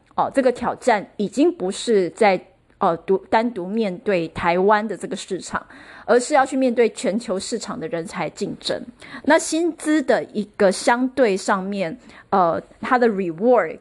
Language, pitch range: Chinese, 190-255 Hz